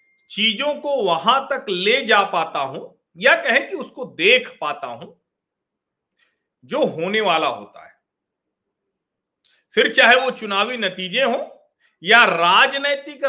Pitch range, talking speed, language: 170-275 Hz, 125 wpm, Hindi